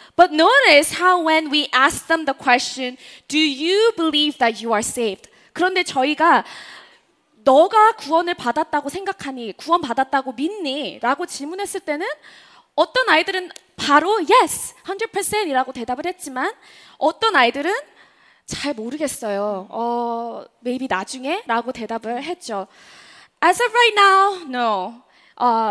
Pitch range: 235-350 Hz